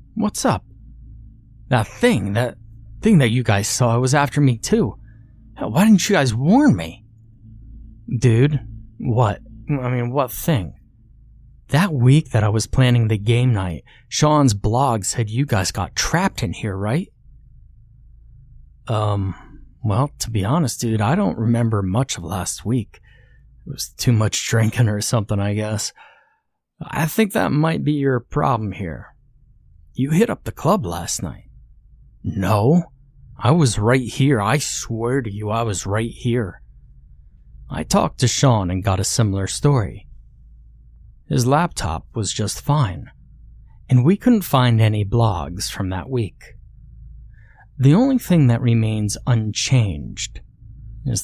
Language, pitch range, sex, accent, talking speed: English, 105-130 Hz, male, American, 145 wpm